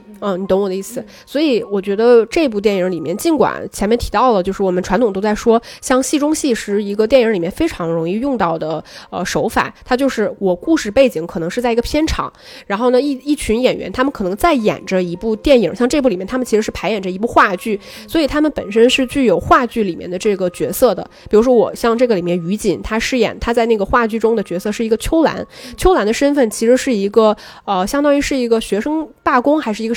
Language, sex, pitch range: Chinese, female, 200-270 Hz